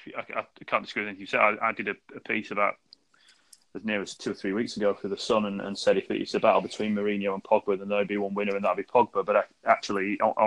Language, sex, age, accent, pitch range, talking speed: English, male, 20-39, British, 100-105 Hz, 285 wpm